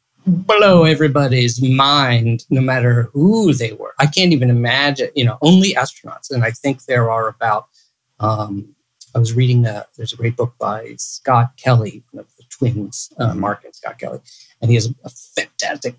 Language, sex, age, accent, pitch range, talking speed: English, male, 30-49, American, 120-145 Hz, 185 wpm